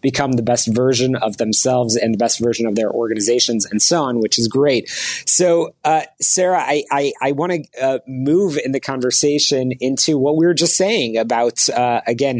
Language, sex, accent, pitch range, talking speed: English, male, American, 125-150 Hz, 200 wpm